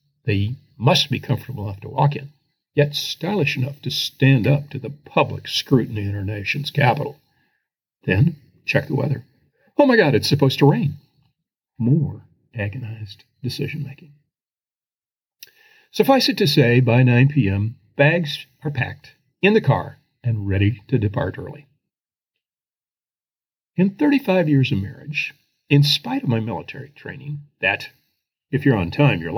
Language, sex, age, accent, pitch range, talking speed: English, male, 50-69, American, 120-150 Hz, 145 wpm